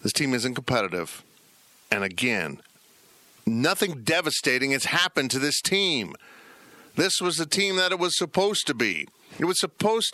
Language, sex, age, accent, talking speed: English, male, 50-69, American, 155 wpm